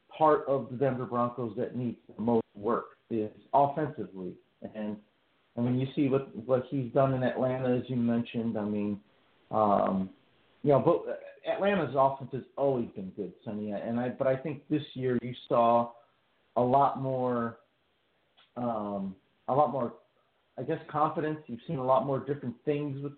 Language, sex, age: English, male, 50-69